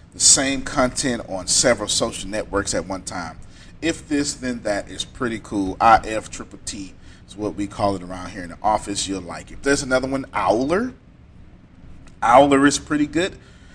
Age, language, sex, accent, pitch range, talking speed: 30-49, English, male, American, 95-135 Hz, 185 wpm